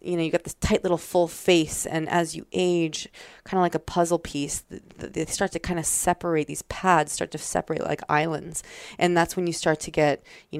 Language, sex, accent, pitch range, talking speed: English, female, American, 155-180 Hz, 225 wpm